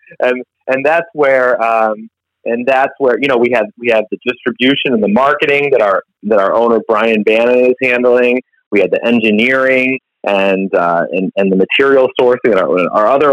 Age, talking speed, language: 30-49, 195 wpm, English